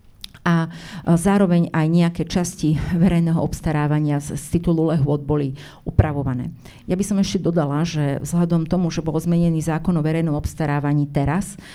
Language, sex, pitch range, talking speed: Slovak, female, 155-180 Hz, 150 wpm